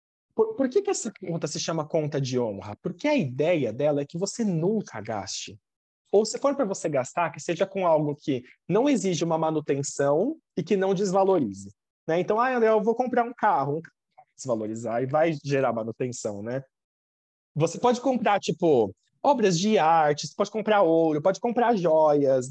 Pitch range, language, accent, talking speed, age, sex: 145-205 Hz, Portuguese, Brazilian, 185 wpm, 20-39, male